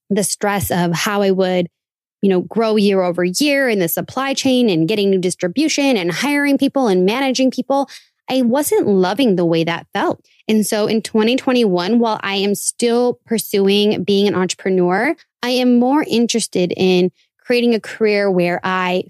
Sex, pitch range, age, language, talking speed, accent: female, 185-230 Hz, 20-39, English, 175 wpm, American